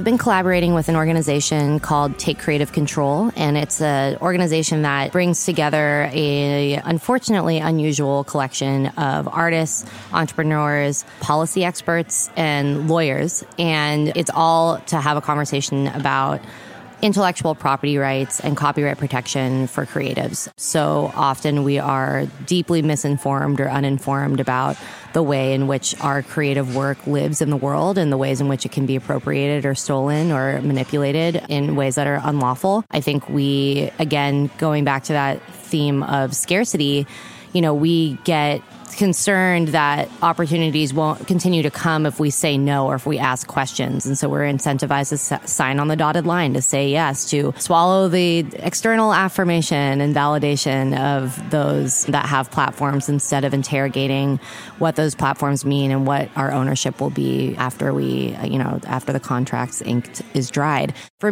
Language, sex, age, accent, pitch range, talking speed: English, female, 20-39, American, 140-160 Hz, 160 wpm